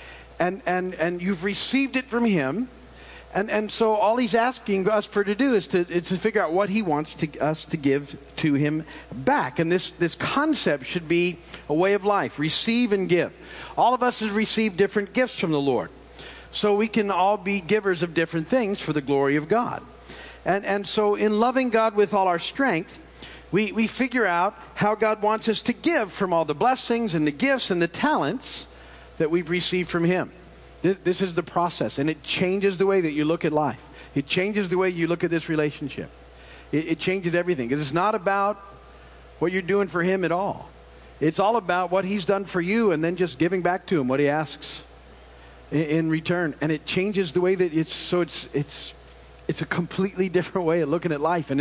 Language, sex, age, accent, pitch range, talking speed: English, male, 50-69, American, 155-205 Hz, 215 wpm